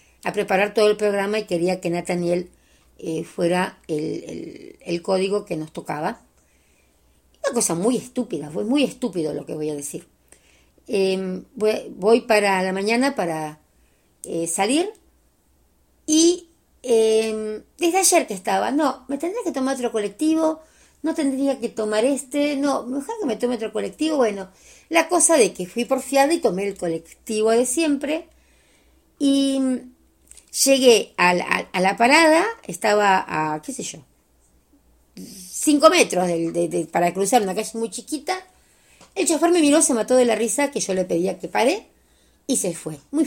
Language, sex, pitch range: Spanish, female, 180-270 Hz